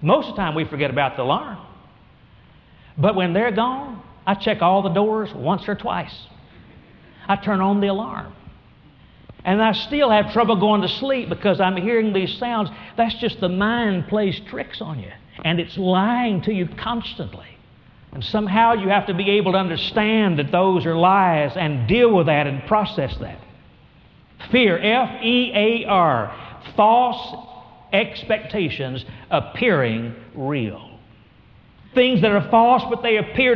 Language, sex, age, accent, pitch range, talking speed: English, male, 60-79, American, 150-220 Hz, 155 wpm